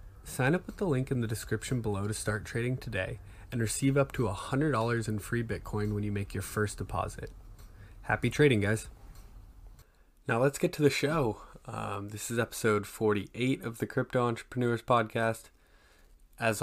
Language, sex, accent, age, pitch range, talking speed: English, male, American, 20-39, 100-115 Hz, 170 wpm